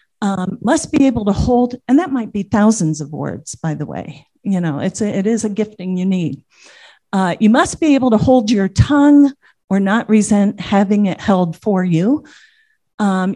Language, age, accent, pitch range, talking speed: English, 50-69, American, 185-255 Hz, 190 wpm